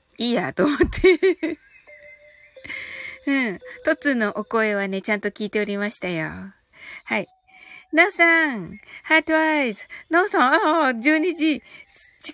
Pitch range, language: 215-315 Hz, Japanese